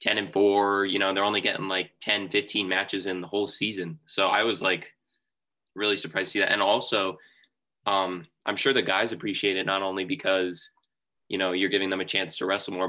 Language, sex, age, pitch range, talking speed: English, male, 20-39, 90-105 Hz, 220 wpm